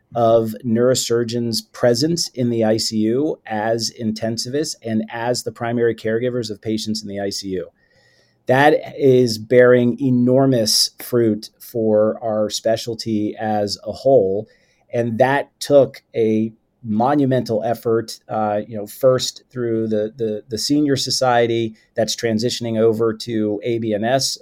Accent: American